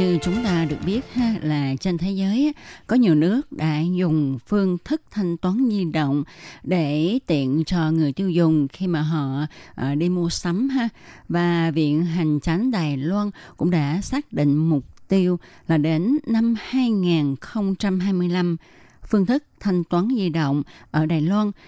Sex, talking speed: female, 160 wpm